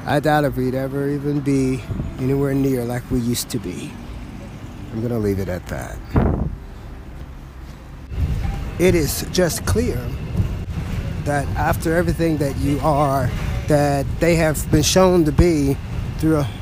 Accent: American